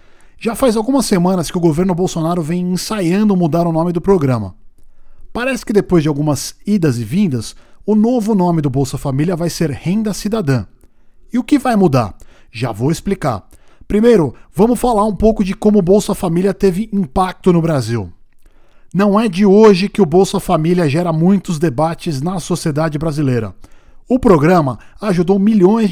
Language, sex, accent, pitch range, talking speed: Portuguese, male, Brazilian, 150-205 Hz, 170 wpm